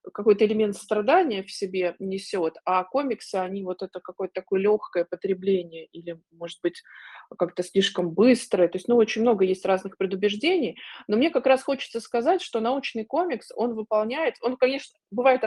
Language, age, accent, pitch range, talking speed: Russian, 20-39, native, 195-240 Hz, 165 wpm